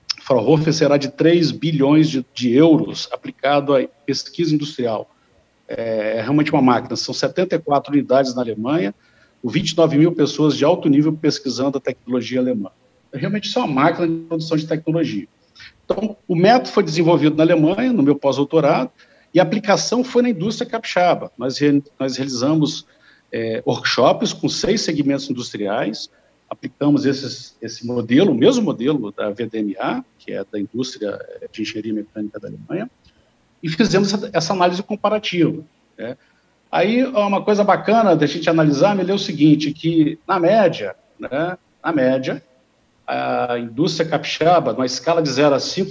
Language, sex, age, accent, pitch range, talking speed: Portuguese, male, 50-69, Brazilian, 135-180 Hz, 155 wpm